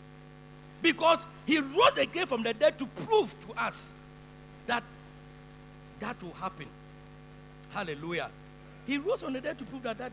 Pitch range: 195-305 Hz